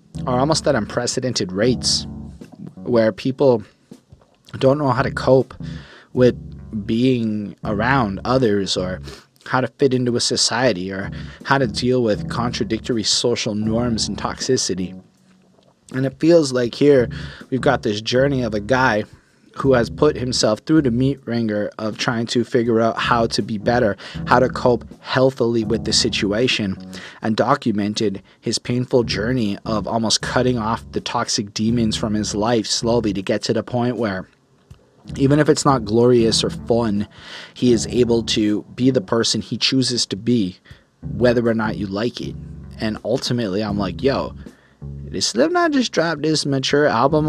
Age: 20-39